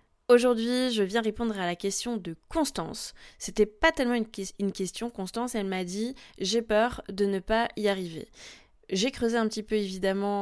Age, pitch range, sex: 20-39, 195-230 Hz, female